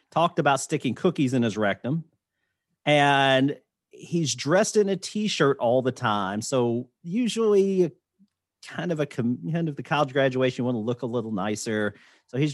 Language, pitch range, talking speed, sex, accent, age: English, 110-150 Hz, 170 wpm, male, American, 40-59